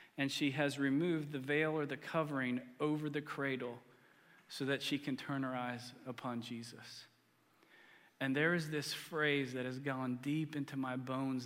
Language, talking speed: English, 175 wpm